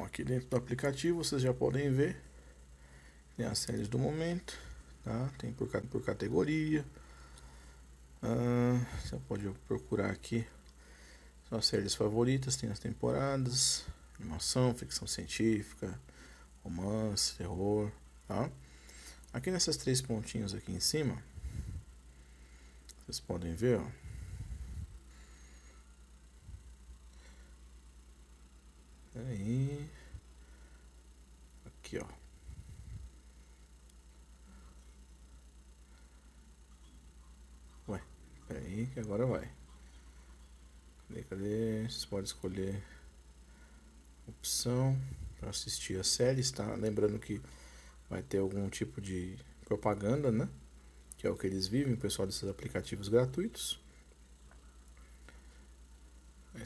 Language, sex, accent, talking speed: English, male, Brazilian, 90 wpm